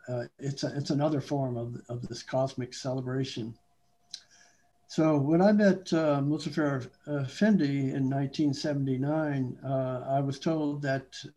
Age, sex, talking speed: 60-79, male, 130 wpm